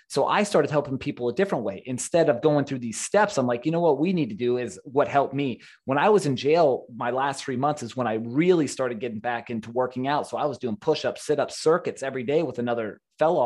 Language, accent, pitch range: English, American, 120-150 Hz